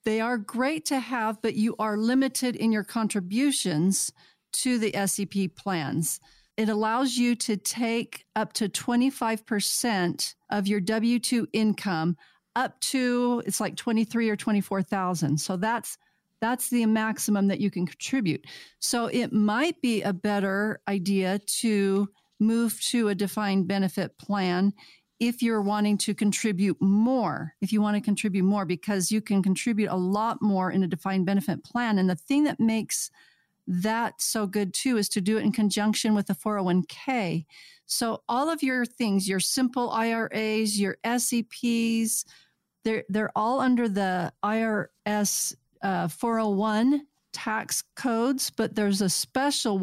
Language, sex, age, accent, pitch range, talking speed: English, female, 40-59, American, 195-235 Hz, 150 wpm